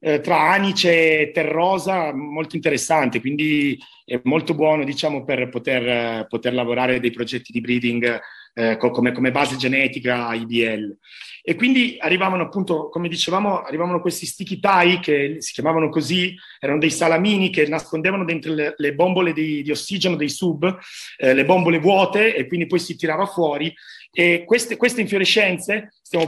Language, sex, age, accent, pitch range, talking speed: Italian, male, 30-49, native, 150-190 Hz, 160 wpm